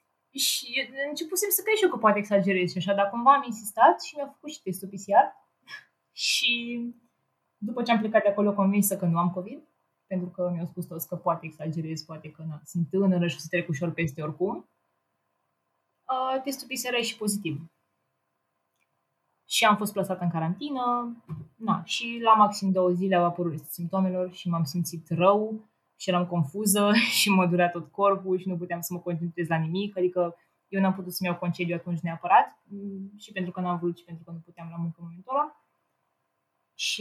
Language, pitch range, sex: Romanian, 170-220 Hz, female